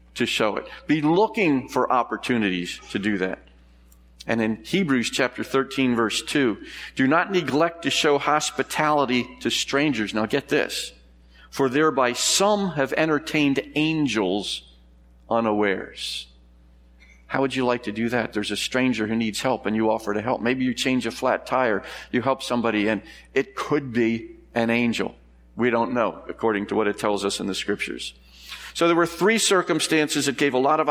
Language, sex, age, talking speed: English, male, 50-69, 175 wpm